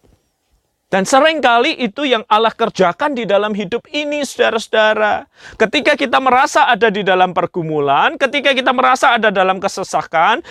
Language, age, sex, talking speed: Malay, 30-49, male, 135 wpm